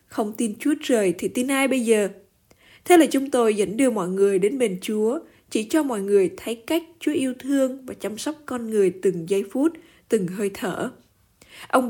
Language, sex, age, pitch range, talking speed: Vietnamese, female, 20-39, 210-285 Hz, 205 wpm